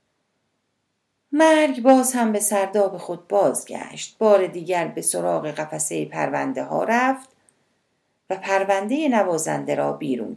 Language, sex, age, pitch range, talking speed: Persian, female, 40-59, 160-245 Hz, 115 wpm